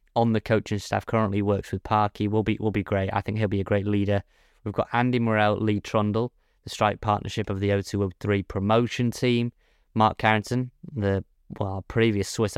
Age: 20-39